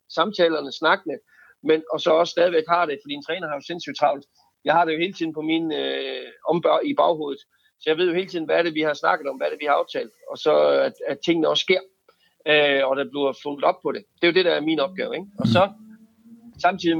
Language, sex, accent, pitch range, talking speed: Danish, male, native, 140-185 Hz, 260 wpm